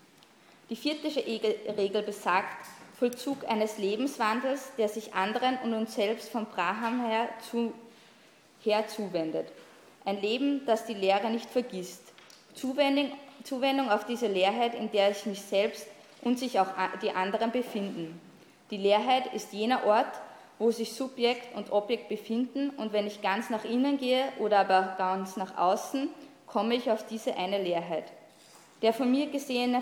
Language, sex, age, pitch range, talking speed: German, female, 20-39, 205-255 Hz, 150 wpm